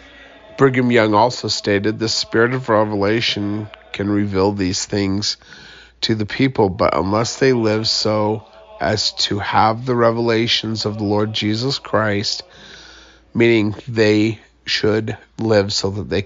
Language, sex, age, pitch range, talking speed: English, male, 40-59, 105-135 Hz, 135 wpm